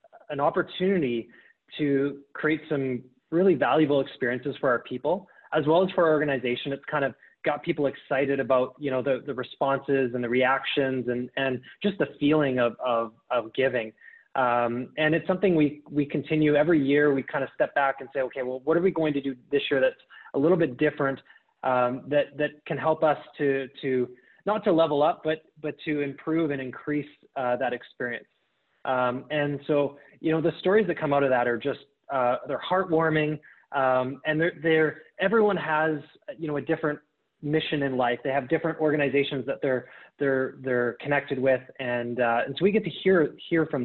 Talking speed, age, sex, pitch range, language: 195 wpm, 20-39, male, 130-155 Hz, English